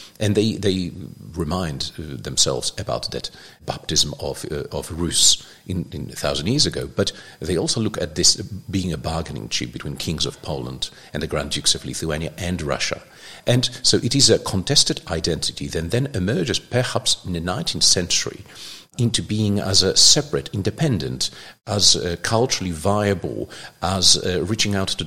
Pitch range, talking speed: 85-110 Hz, 165 wpm